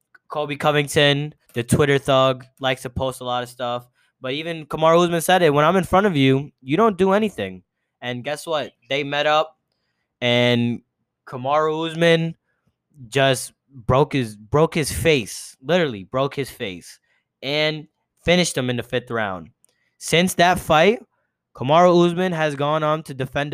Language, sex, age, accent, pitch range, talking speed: English, male, 20-39, American, 125-155 Hz, 165 wpm